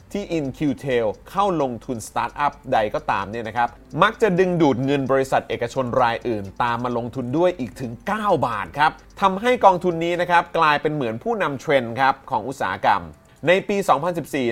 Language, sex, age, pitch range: Thai, male, 20-39, 125-180 Hz